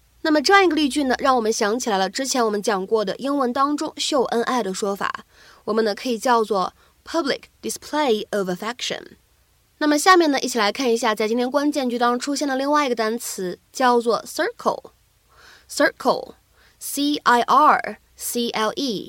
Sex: female